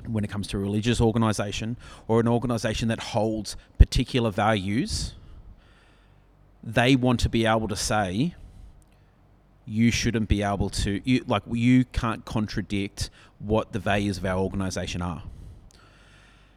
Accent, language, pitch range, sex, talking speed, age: Australian, English, 100-115 Hz, male, 135 wpm, 30-49